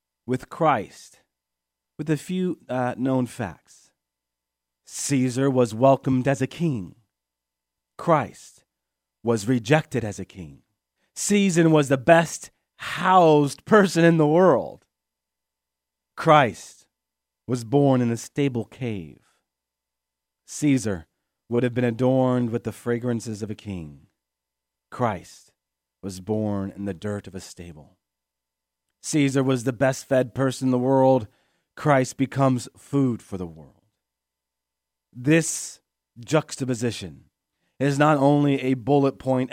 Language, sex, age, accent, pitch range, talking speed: English, male, 40-59, American, 85-135 Hz, 115 wpm